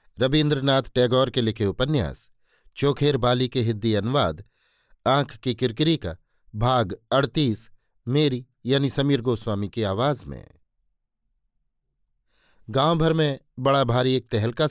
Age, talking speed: 50-69, 120 wpm